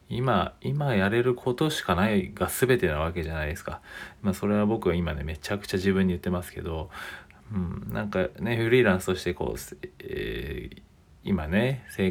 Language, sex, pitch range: Japanese, male, 90-120 Hz